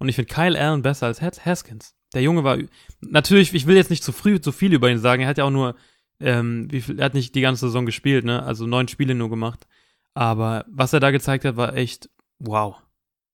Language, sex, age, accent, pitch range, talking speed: German, male, 20-39, German, 120-140 Hz, 240 wpm